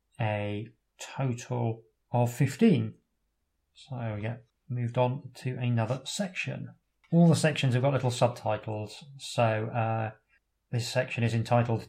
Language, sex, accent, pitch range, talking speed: English, male, British, 115-140 Hz, 120 wpm